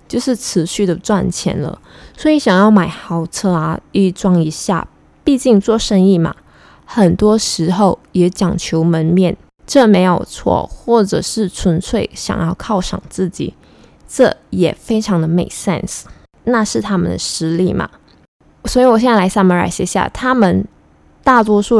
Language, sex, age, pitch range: Chinese, female, 20-39, 175-220 Hz